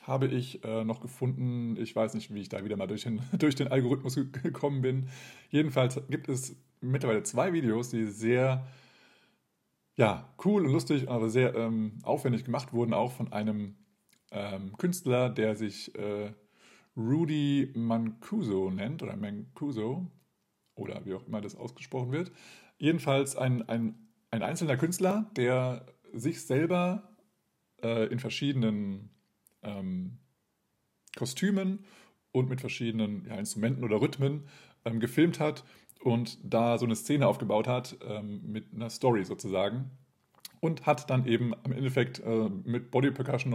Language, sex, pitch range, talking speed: German, male, 110-140 Hz, 135 wpm